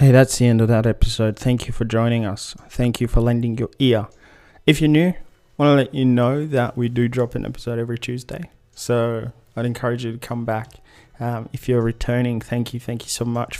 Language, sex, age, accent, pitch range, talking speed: English, male, 20-39, Australian, 115-130 Hz, 230 wpm